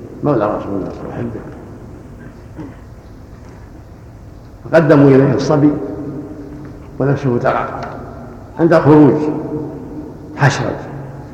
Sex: male